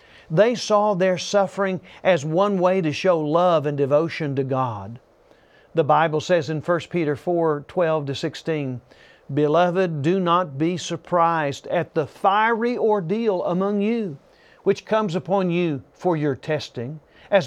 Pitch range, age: 145-190 Hz, 50-69